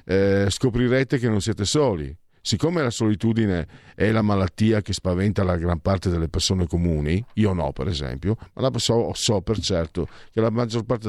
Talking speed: 185 wpm